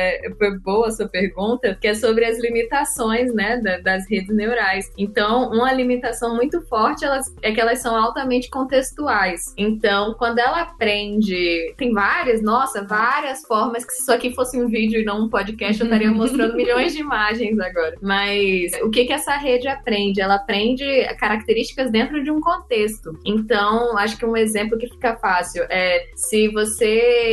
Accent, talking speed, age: Brazilian, 170 wpm, 10-29